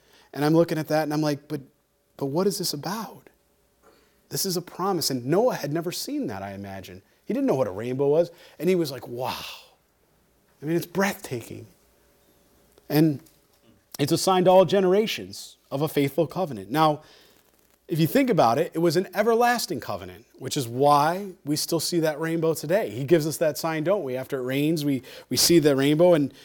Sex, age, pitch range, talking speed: male, 30-49, 140-175 Hz, 200 wpm